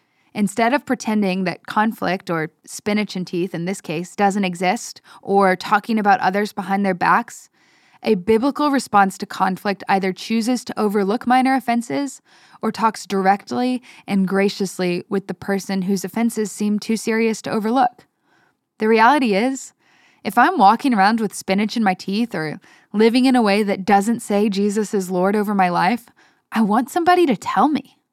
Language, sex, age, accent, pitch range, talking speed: English, female, 10-29, American, 195-245 Hz, 170 wpm